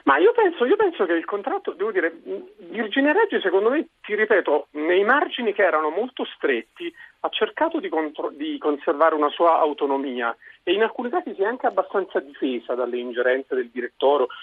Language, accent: Italian, native